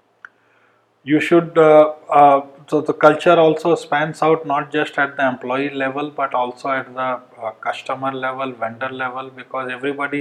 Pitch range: 125-150 Hz